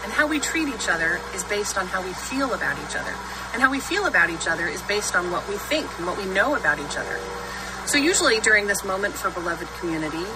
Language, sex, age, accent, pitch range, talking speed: English, female, 30-49, American, 175-265 Hz, 250 wpm